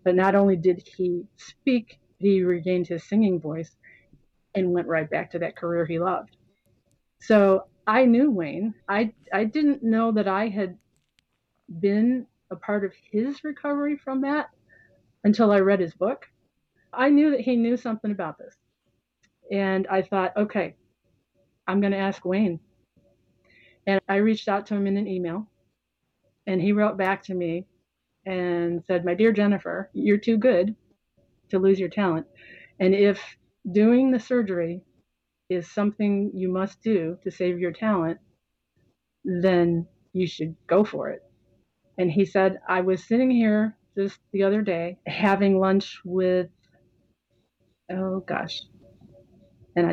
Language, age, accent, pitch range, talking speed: English, 30-49, American, 180-215 Hz, 150 wpm